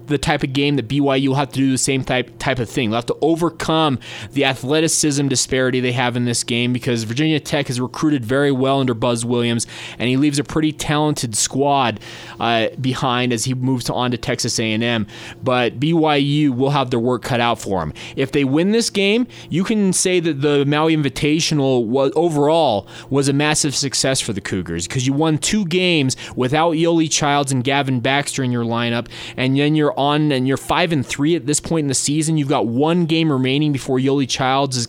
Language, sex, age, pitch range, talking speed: English, male, 20-39, 120-150 Hz, 210 wpm